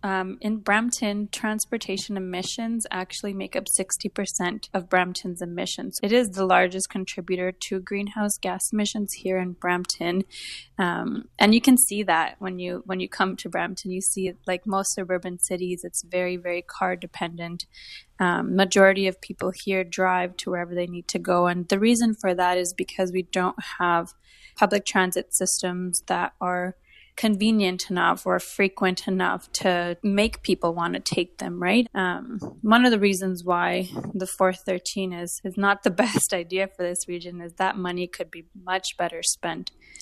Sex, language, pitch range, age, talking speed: female, English, 180-200 Hz, 20-39, 170 wpm